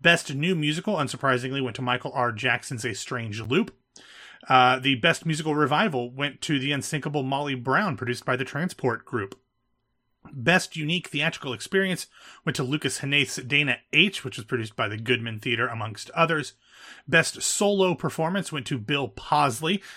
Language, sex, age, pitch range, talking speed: English, male, 30-49, 125-160 Hz, 160 wpm